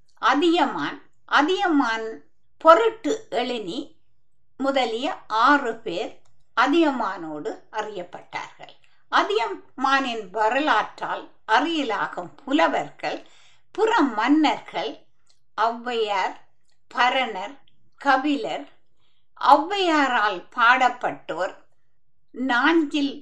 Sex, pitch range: female, 240-330 Hz